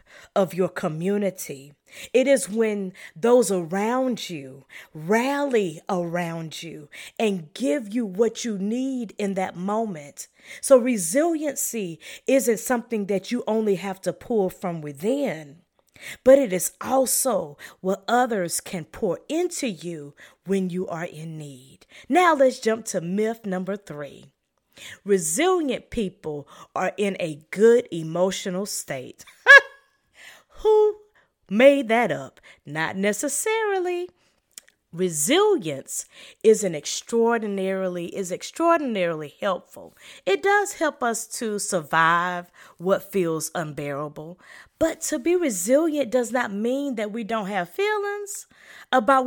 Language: English